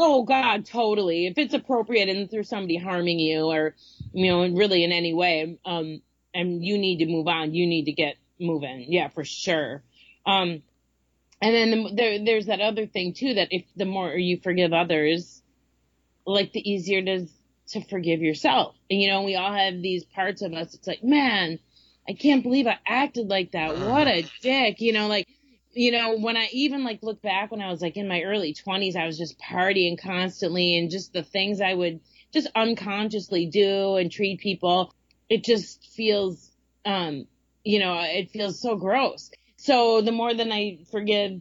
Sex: female